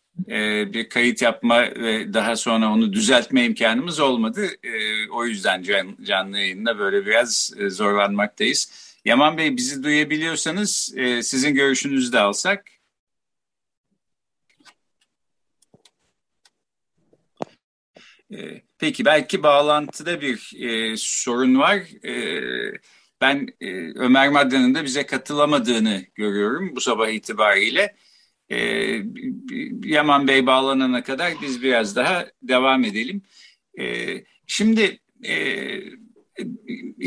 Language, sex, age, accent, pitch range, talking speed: Turkish, male, 50-69, native, 125-210 Hz, 85 wpm